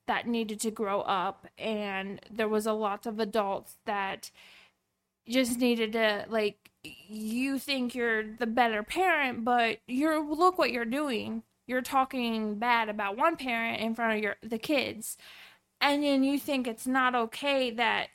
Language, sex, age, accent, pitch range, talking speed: English, female, 20-39, American, 225-285 Hz, 160 wpm